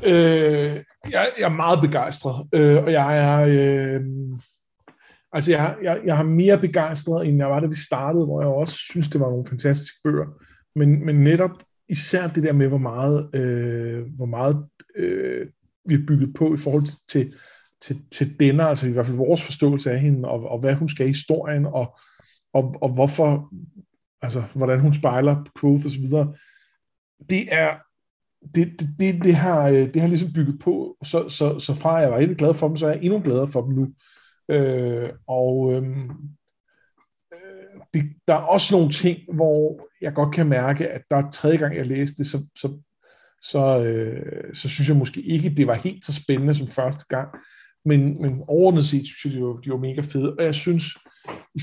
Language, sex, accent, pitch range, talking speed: Danish, male, native, 135-160 Hz, 200 wpm